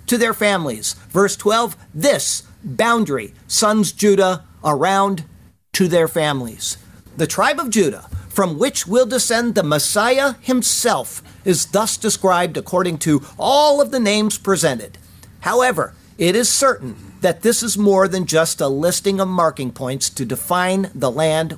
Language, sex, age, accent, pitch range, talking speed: English, male, 50-69, American, 125-205 Hz, 145 wpm